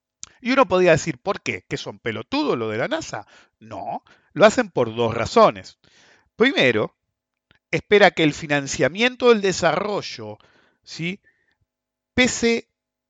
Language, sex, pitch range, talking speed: English, male, 130-210 Hz, 130 wpm